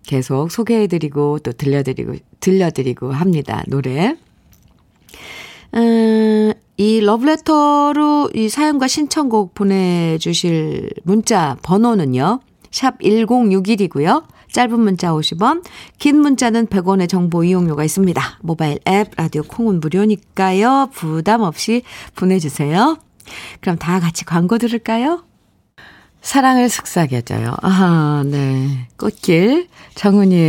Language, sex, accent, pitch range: Korean, female, native, 165-245 Hz